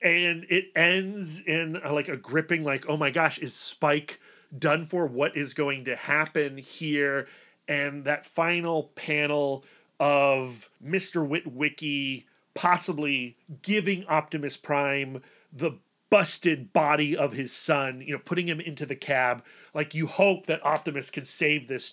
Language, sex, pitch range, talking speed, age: English, male, 150-210 Hz, 145 wpm, 30-49